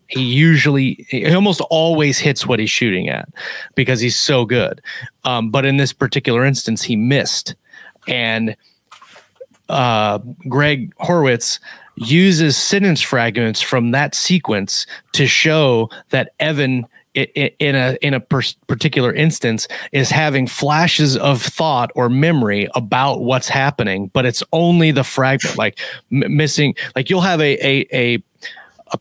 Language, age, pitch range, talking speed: English, 30-49, 120-150 Hz, 145 wpm